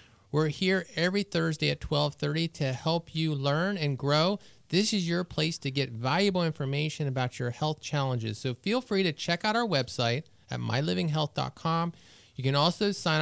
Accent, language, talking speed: American, English, 175 wpm